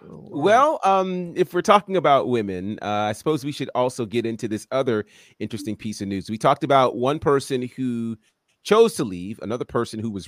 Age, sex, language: 30-49, male, English